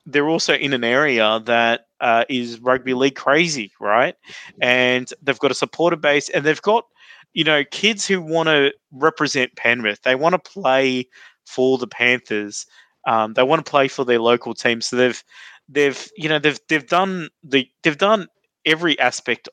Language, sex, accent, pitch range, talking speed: English, male, Australian, 120-150 Hz, 180 wpm